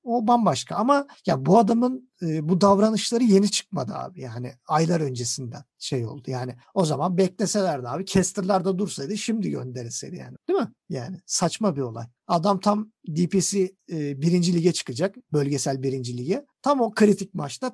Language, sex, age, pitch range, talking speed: Turkish, male, 50-69, 135-205 Hz, 160 wpm